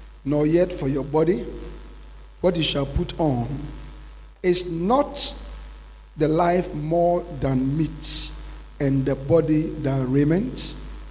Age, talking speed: 50-69, 120 wpm